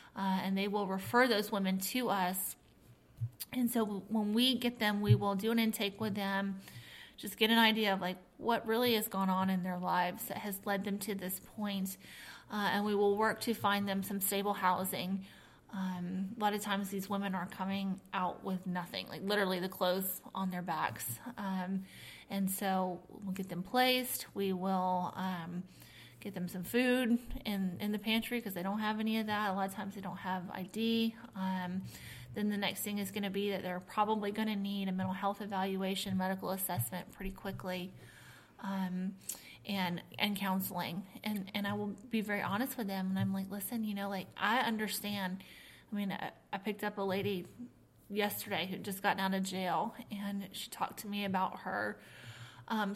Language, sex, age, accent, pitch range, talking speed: English, female, 20-39, American, 185-210 Hz, 195 wpm